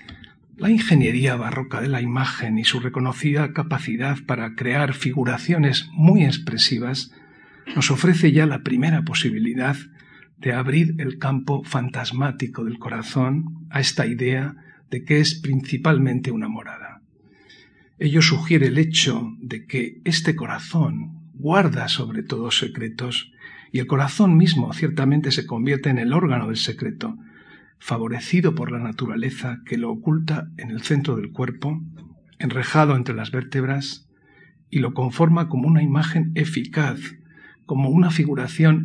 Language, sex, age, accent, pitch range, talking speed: Spanish, male, 50-69, Spanish, 125-160 Hz, 135 wpm